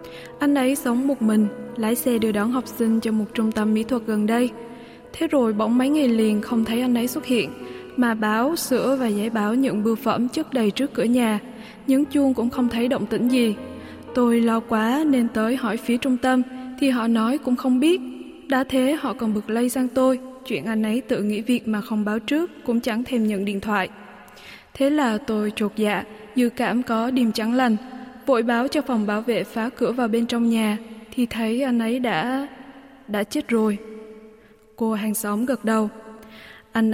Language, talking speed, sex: Vietnamese, 210 wpm, female